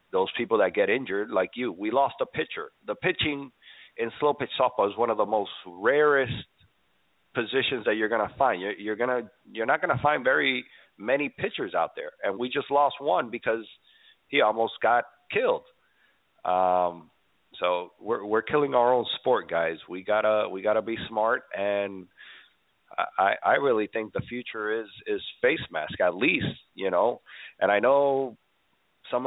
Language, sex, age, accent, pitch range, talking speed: English, male, 40-59, American, 105-140 Hz, 185 wpm